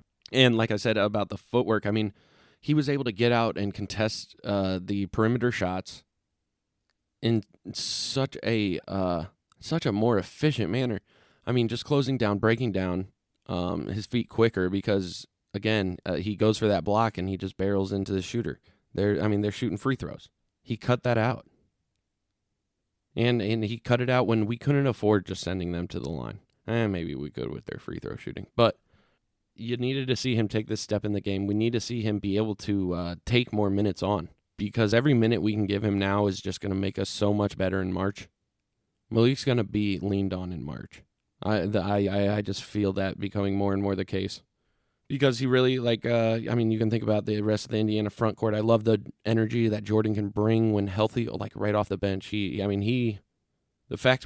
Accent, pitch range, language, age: American, 100-115 Hz, English, 20-39